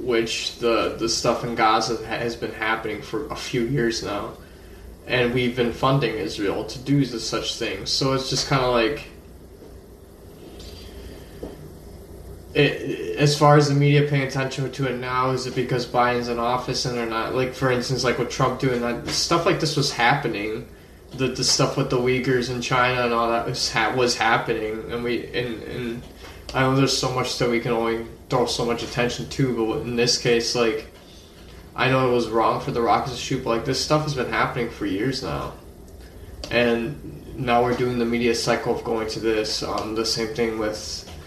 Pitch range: 110-130 Hz